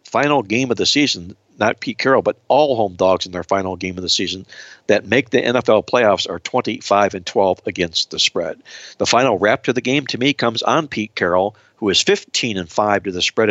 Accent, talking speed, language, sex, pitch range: American, 225 wpm, English, male, 95-115 Hz